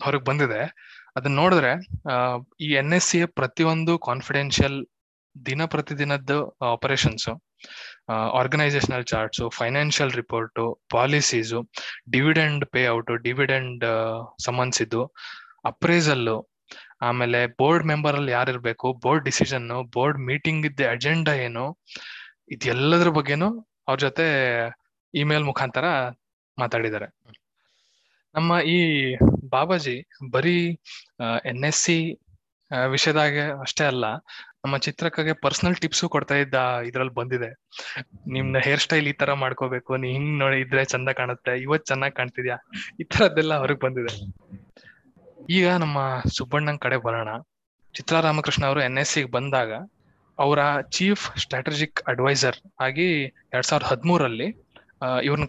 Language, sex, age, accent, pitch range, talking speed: Kannada, male, 20-39, native, 125-150 Hz, 105 wpm